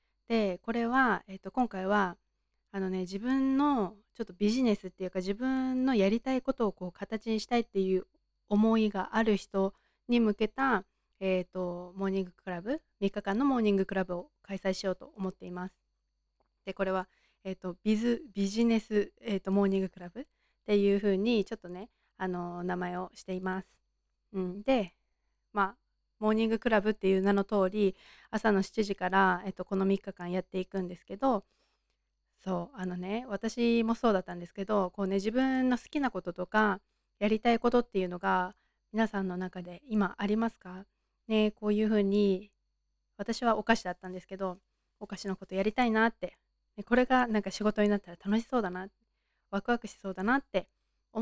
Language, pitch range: Japanese, 190-225 Hz